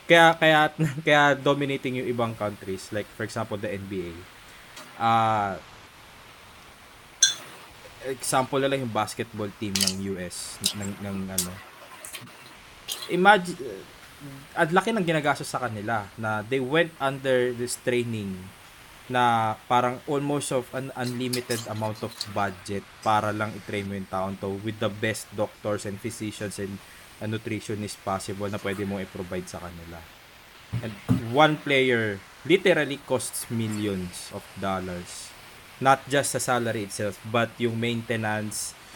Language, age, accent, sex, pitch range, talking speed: Filipino, 20-39, native, male, 100-125 Hz, 130 wpm